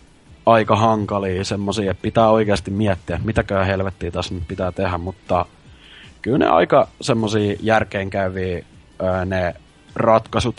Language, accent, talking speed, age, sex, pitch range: Finnish, native, 125 wpm, 20-39, male, 100-125 Hz